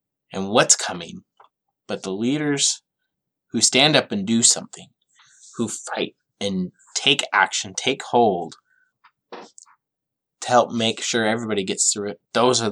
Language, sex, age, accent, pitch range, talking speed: English, male, 20-39, American, 95-115 Hz, 135 wpm